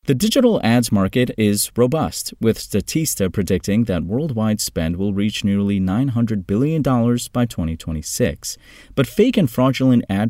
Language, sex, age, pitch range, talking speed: English, male, 30-49, 90-125 Hz, 140 wpm